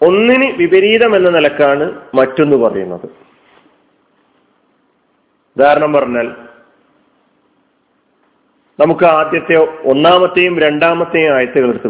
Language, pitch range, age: Malayalam, 145-205 Hz, 40-59